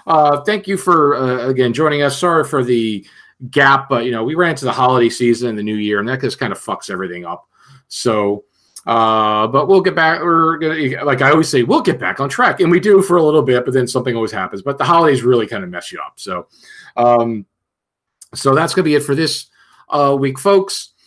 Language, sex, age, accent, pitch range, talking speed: English, male, 40-59, American, 115-150 Hz, 240 wpm